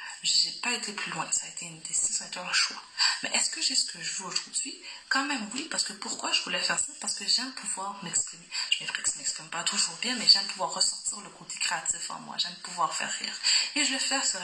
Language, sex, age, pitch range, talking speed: French, female, 20-39, 200-265 Hz, 270 wpm